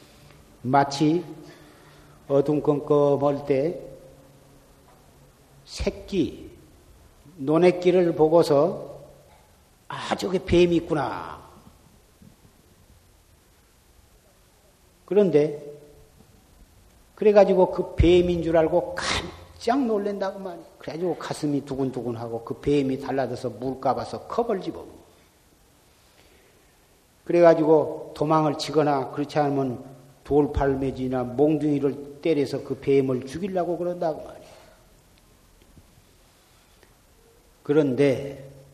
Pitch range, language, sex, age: 125-165 Hz, Korean, male, 40-59